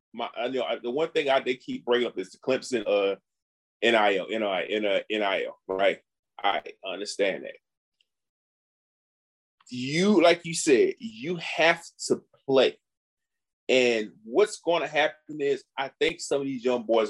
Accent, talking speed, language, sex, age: American, 160 wpm, English, male, 30-49